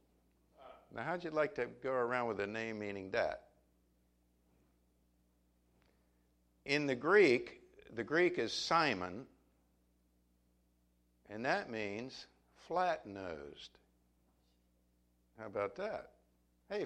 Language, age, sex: English, 60-79, male